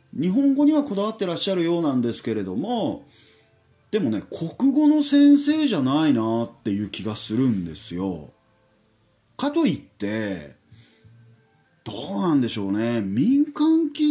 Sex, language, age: male, Japanese, 40-59